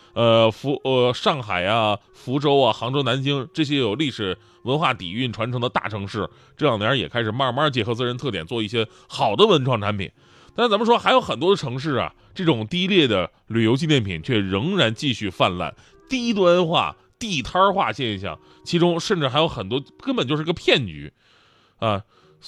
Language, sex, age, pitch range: Chinese, male, 20-39, 110-175 Hz